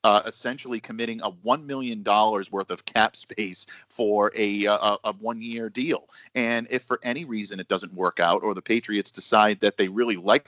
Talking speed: 190 wpm